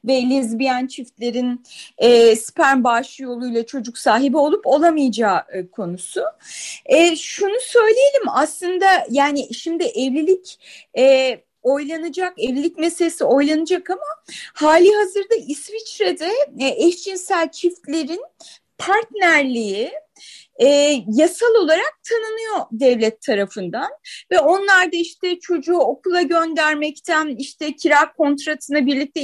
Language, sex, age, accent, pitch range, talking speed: Turkish, female, 30-49, native, 265-360 Hz, 105 wpm